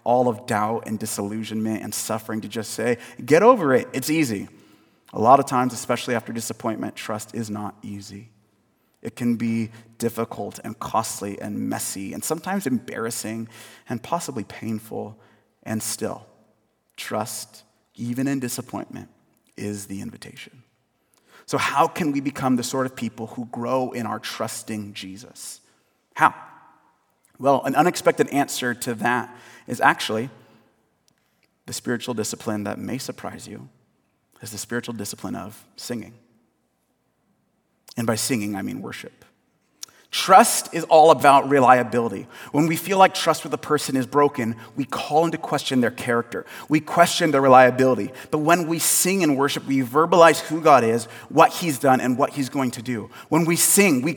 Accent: American